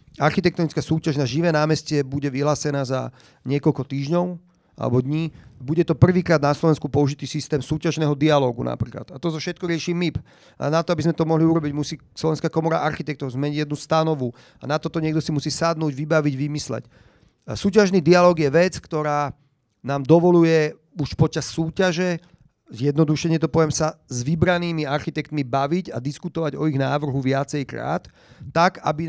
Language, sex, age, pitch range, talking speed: Slovak, male, 40-59, 145-170 Hz, 165 wpm